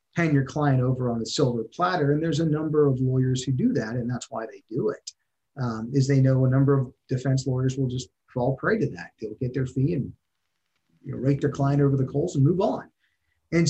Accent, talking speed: American, 240 wpm